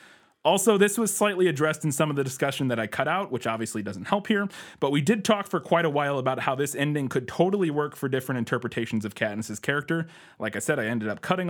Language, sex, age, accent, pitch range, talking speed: English, male, 30-49, American, 120-160 Hz, 245 wpm